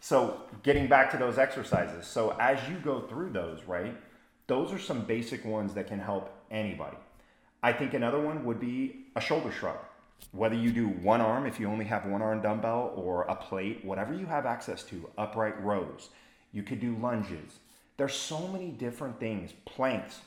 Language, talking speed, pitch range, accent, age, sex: English, 185 wpm, 100-130 Hz, American, 30-49, male